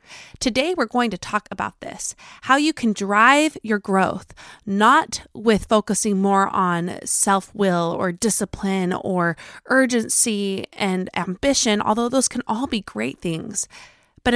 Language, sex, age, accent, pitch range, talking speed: English, female, 20-39, American, 185-230 Hz, 140 wpm